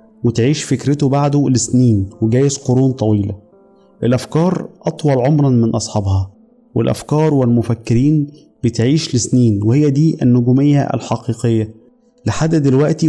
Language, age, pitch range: Arabic, 30-49, 115-145 Hz